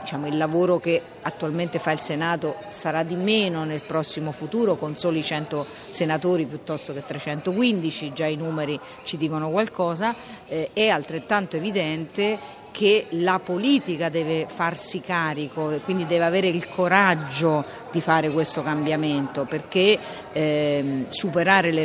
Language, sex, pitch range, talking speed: Italian, female, 150-185 Hz, 130 wpm